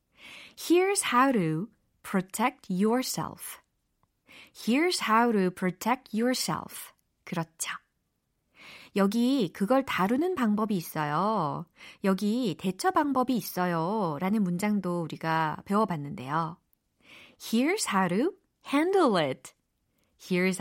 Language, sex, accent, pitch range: Korean, female, native, 185-275 Hz